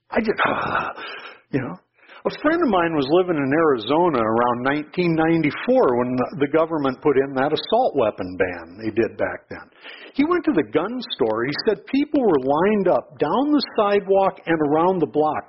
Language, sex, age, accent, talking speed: English, male, 60-79, American, 180 wpm